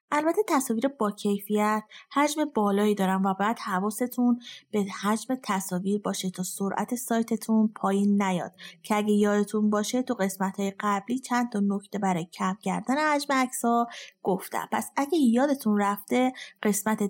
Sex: female